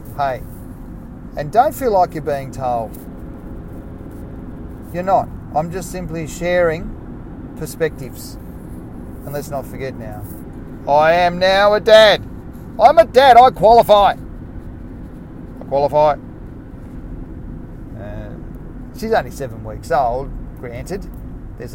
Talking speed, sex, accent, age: 110 wpm, male, Australian, 40-59